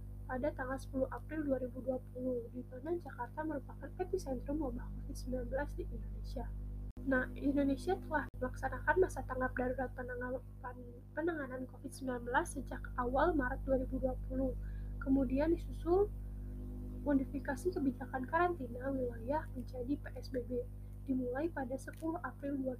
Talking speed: 105 wpm